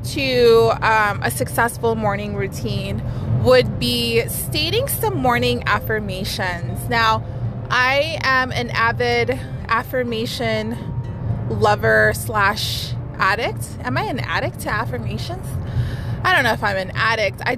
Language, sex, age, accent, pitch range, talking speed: English, female, 20-39, American, 115-135 Hz, 120 wpm